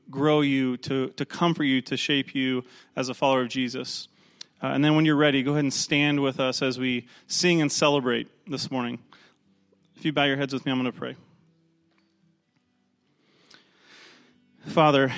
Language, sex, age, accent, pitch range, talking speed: English, male, 30-49, American, 135-155 Hz, 180 wpm